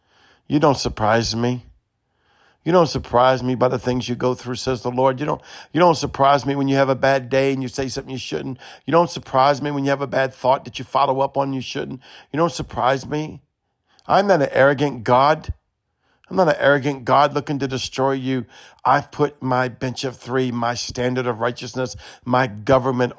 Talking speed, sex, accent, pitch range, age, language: 210 wpm, male, American, 110-135 Hz, 50-69, English